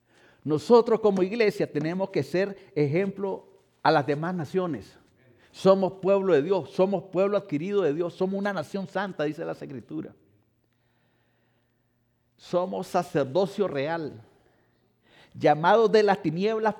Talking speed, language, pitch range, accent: 120 wpm, English, 120-155 Hz, Mexican